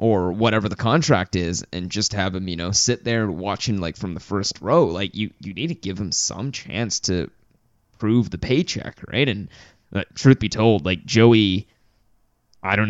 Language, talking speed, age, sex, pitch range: English, 195 wpm, 20-39, male, 100-125 Hz